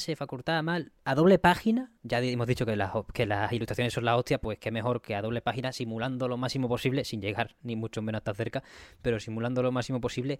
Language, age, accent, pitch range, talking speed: Spanish, 20-39, Spanish, 110-140 Hz, 225 wpm